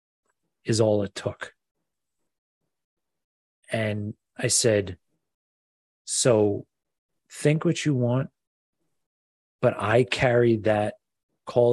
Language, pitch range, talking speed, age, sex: English, 100-120 Hz, 85 wpm, 30-49, male